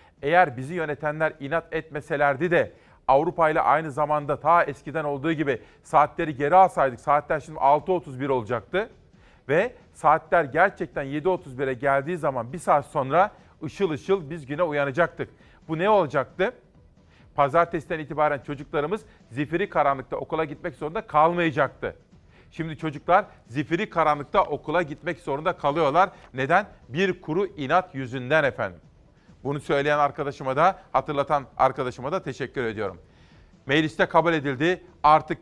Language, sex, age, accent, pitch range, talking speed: Turkish, male, 40-59, native, 145-175 Hz, 125 wpm